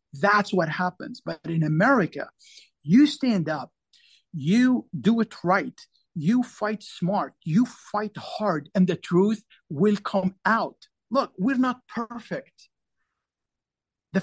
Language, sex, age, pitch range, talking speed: English, male, 50-69, 165-220 Hz, 125 wpm